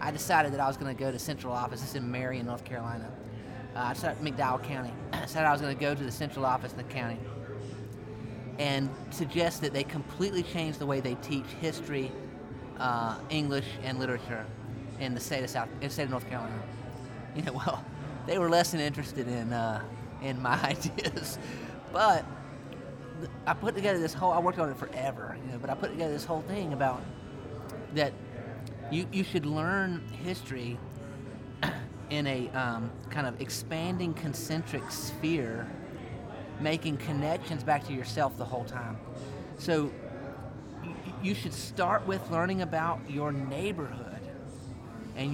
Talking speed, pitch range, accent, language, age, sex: 170 wpm, 125-155 Hz, American, English, 30-49, male